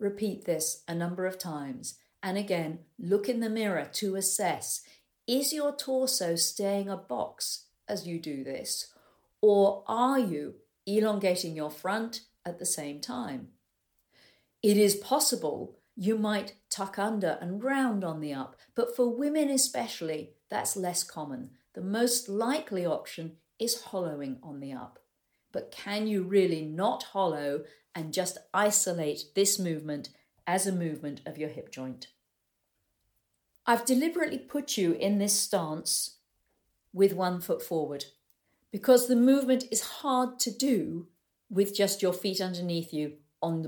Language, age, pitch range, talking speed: English, 50-69, 165-230 Hz, 145 wpm